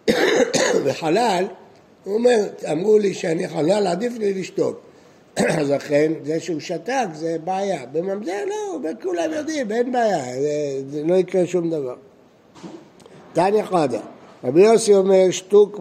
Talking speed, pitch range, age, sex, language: 135 wpm, 155-215 Hz, 60-79, male, Hebrew